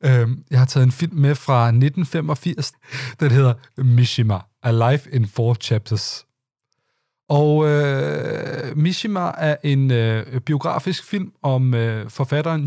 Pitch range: 120-150 Hz